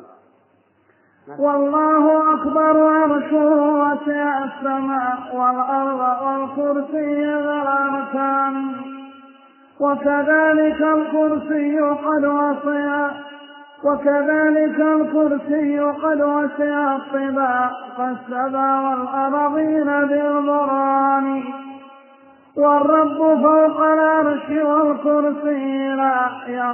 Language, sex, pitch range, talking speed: Arabic, male, 275-305 Hz, 55 wpm